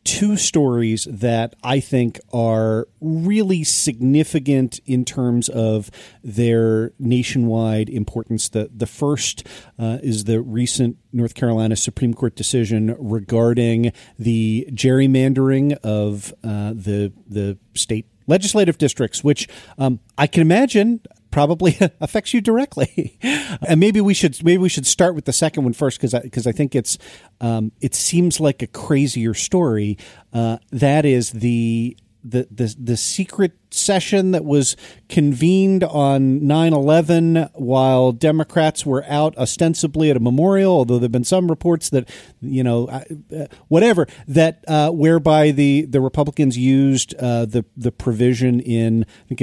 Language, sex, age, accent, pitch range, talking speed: English, male, 40-59, American, 115-150 Hz, 145 wpm